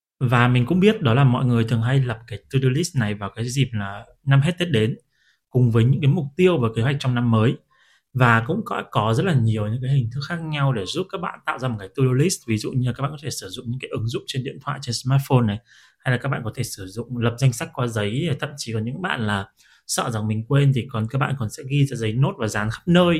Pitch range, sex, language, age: 115-145 Hz, male, Vietnamese, 20-39